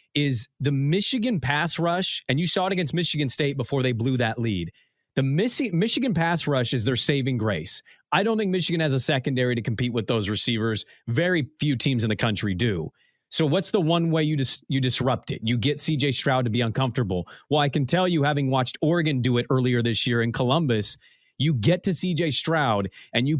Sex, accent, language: male, American, English